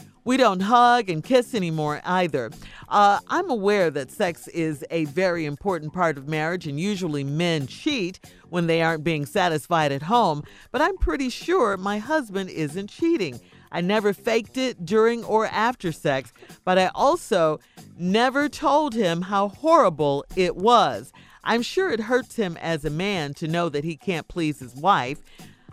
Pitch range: 155-215 Hz